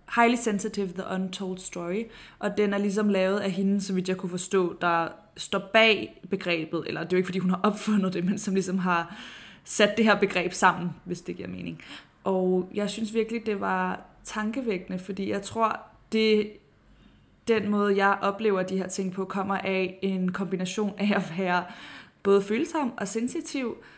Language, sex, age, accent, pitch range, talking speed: Danish, female, 20-39, native, 185-210 Hz, 185 wpm